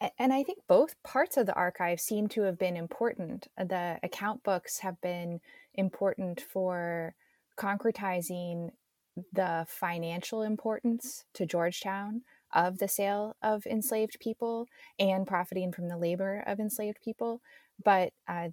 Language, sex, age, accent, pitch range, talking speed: English, female, 20-39, American, 170-225 Hz, 135 wpm